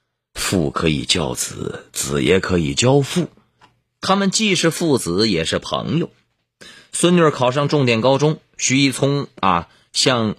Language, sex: Chinese, male